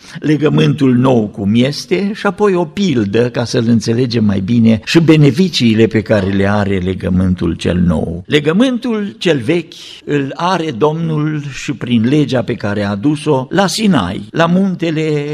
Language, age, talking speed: Romanian, 50-69, 155 wpm